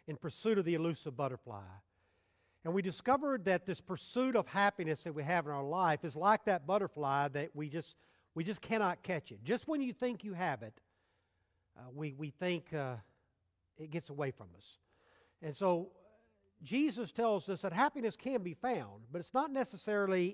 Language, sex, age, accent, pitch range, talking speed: English, male, 50-69, American, 150-210 Hz, 185 wpm